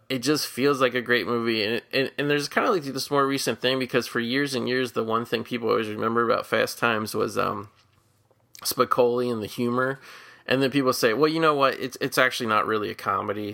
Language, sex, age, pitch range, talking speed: English, male, 20-39, 110-130 Hz, 235 wpm